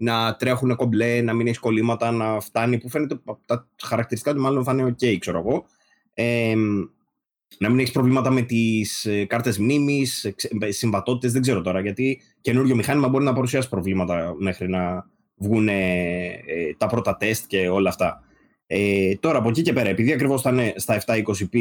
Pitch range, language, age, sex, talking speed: 105-125 Hz, Greek, 20-39, male, 170 wpm